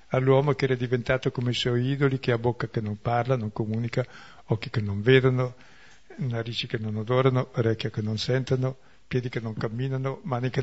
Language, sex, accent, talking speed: Italian, male, native, 190 wpm